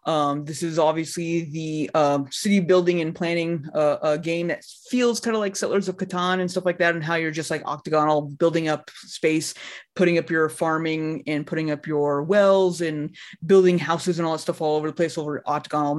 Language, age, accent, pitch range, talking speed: English, 20-39, American, 165-220 Hz, 215 wpm